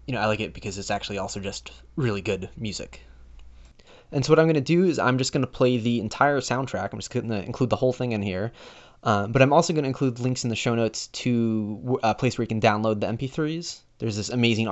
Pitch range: 105-125 Hz